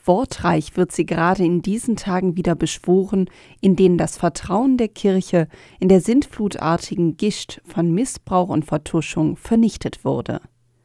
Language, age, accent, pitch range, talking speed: German, 40-59, German, 155-195 Hz, 140 wpm